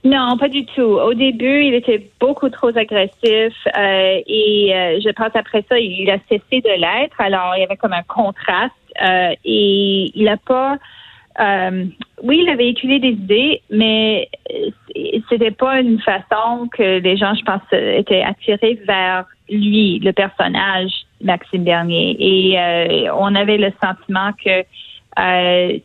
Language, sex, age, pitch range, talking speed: French, female, 30-49, 195-250 Hz, 160 wpm